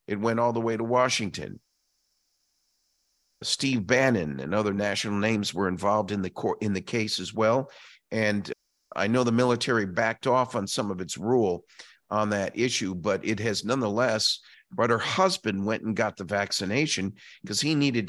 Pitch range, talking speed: 105-125 Hz, 175 wpm